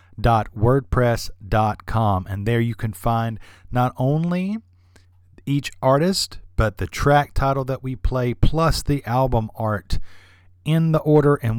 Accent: American